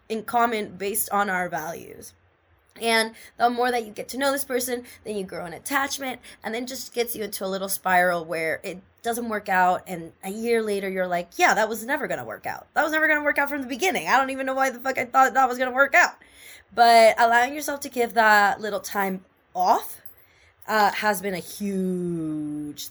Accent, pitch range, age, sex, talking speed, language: American, 195-265 Hz, 20-39, female, 225 wpm, English